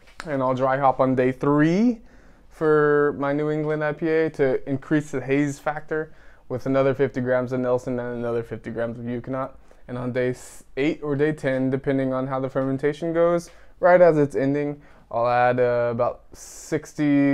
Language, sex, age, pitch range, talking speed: English, male, 20-39, 125-145 Hz, 175 wpm